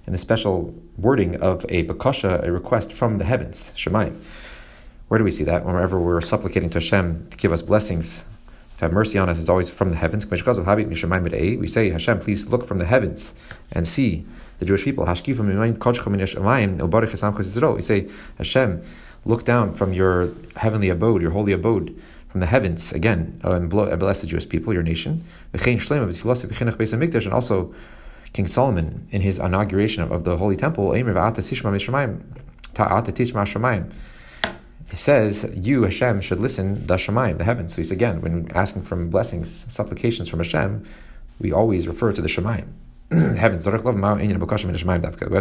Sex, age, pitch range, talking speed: male, 30-49, 85-115 Hz, 150 wpm